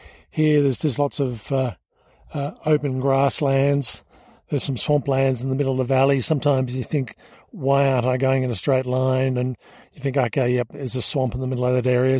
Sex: male